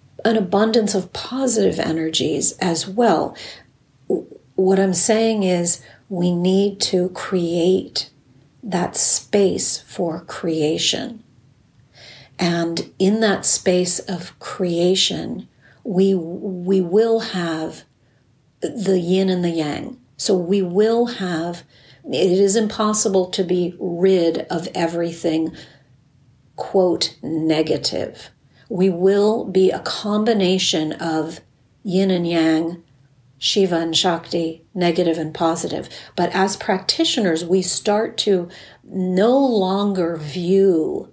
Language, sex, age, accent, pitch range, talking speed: English, female, 50-69, American, 160-195 Hz, 105 wpm